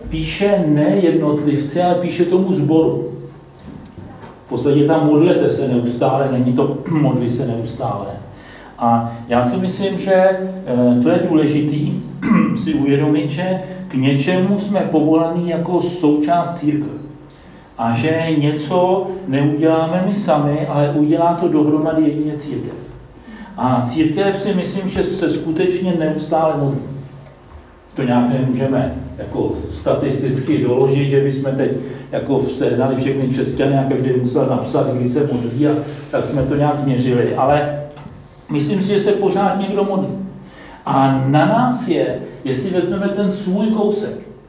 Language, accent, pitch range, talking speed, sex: Czech, native, 135-185 Hz, 135 wpm, male